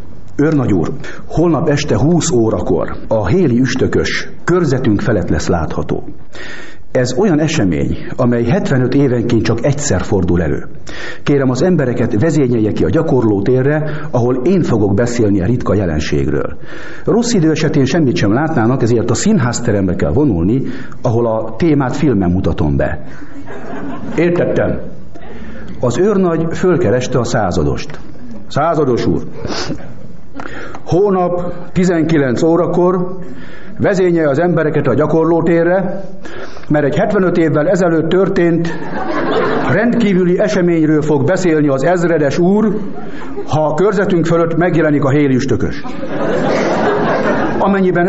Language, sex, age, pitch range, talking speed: Hungarian, male, 60-79, 125-175 Hz, 115 wpm